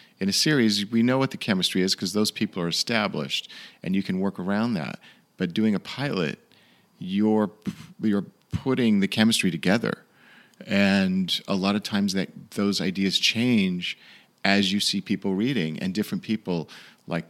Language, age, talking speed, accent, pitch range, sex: English, 40-59, 165 wpm, American, 85-110 Hz, male